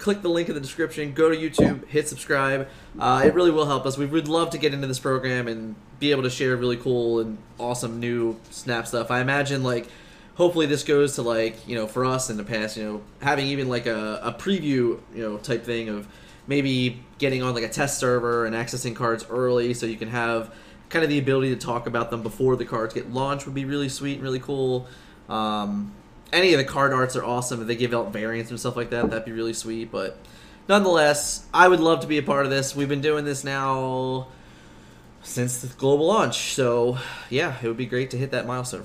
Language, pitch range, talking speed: English, 115-140 Hz, 235 wpm